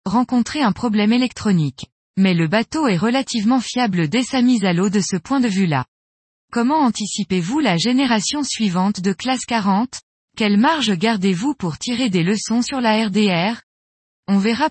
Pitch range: 185-240 Hz